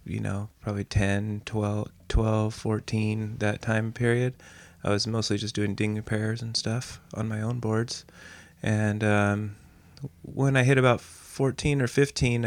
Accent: American